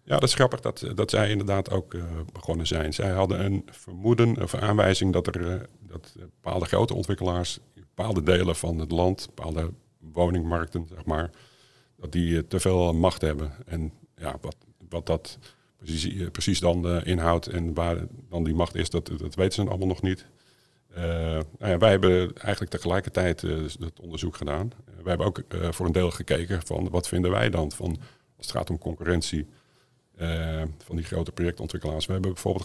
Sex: male